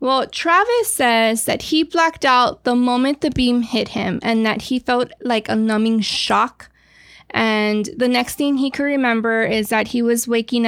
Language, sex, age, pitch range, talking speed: English, female, 20-39, 215-250 Hz, 185 wpm